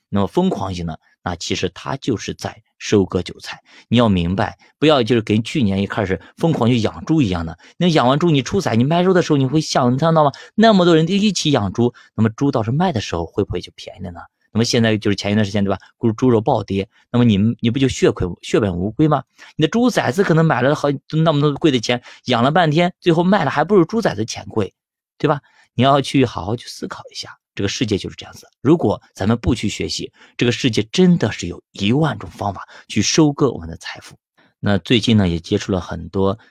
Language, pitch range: Chinese, 90-130 Hz